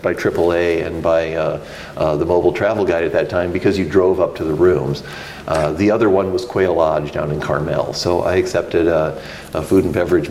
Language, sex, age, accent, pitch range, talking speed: English, male, 50-69, American, 85-110 Hz, 220 wpm